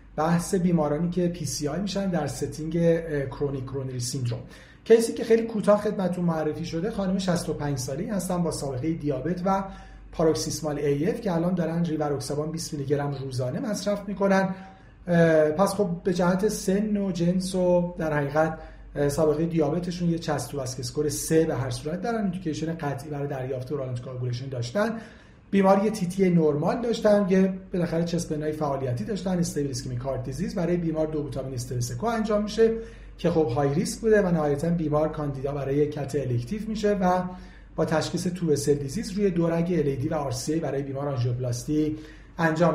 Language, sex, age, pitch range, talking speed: Persian, male, 40-59, 150-190 Hz, 160 wpm